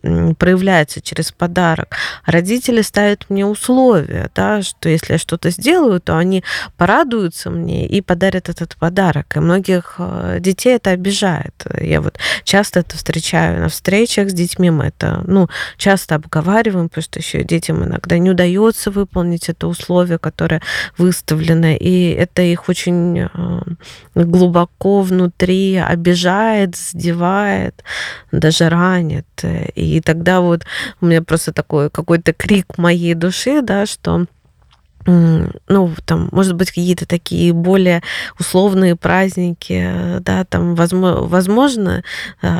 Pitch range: 165-190 Hz